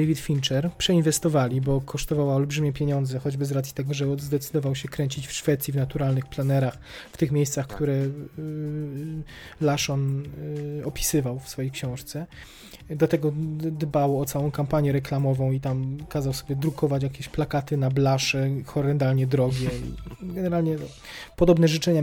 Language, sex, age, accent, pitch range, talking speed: Polish, male, 20-39, native, 135-155 Hz, 135 wpm